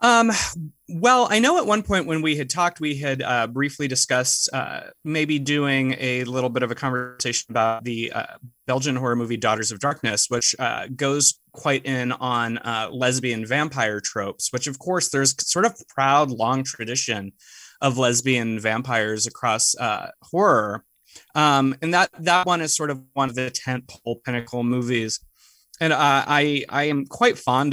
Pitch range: 115-140 Hz